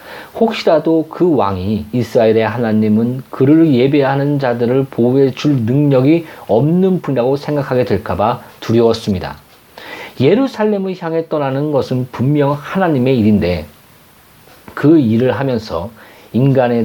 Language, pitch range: Korean, 110-155 Hz